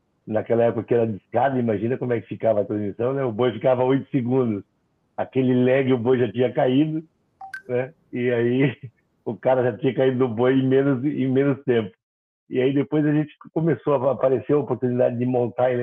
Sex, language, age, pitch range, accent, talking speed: male, Portuguese, 60-79, 110-135 Hz, Brazilian, 195 wpm